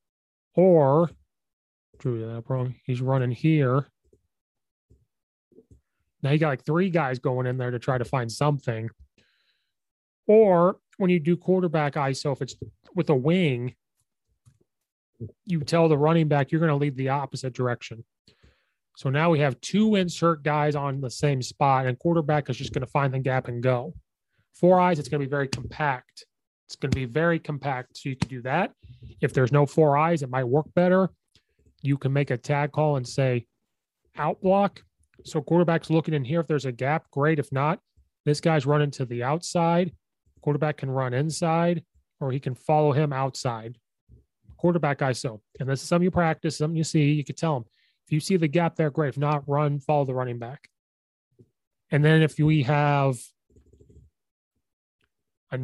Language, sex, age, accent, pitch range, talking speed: English, male, 30-49, American, 130-160 Hz, 180 wpm